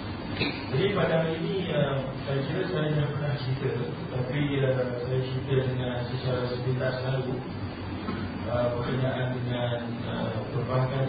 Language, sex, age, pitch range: Malay, male, 40-59, 125-145 Hz